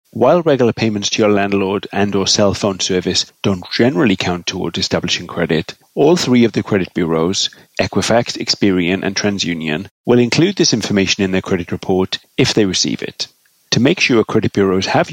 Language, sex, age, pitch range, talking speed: English, male, 30-49, 95-120 Hz, 180 wpm